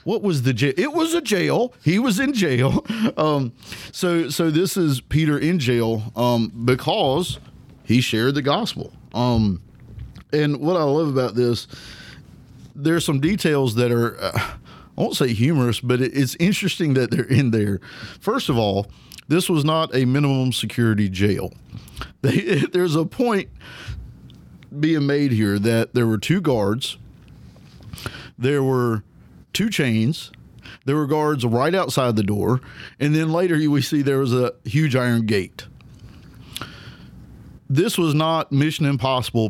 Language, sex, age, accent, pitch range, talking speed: English, male, 50-69, American, 115-150 Hz, 150 wpm